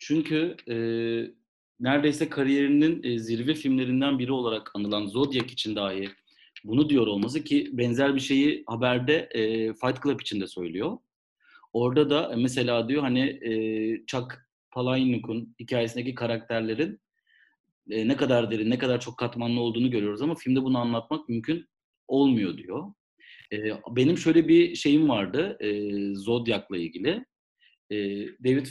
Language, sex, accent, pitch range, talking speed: Turkish, male, native, 115-160 Hz, 135 wpm